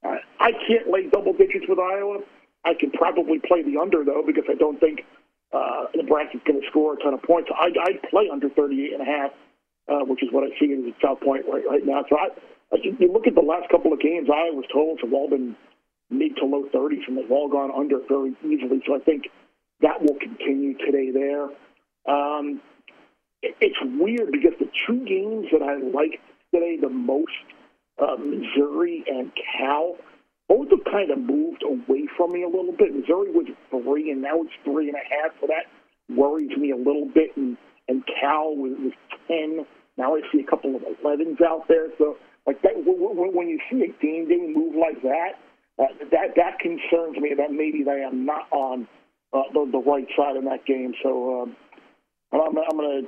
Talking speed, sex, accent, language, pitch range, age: 200 wpm, male, American, English, 140-225 Hz, 50-69